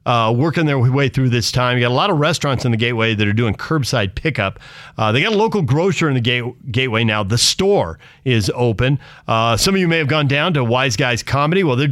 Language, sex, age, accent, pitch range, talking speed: English, male, 40-59, American, 115-150 Hz, 250 wpm